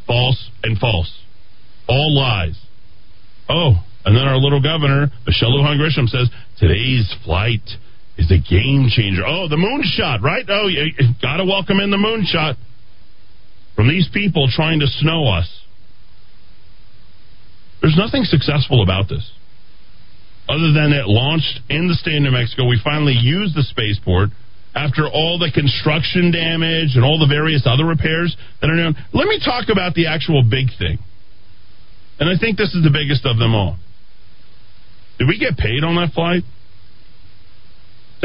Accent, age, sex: American, 40-59, male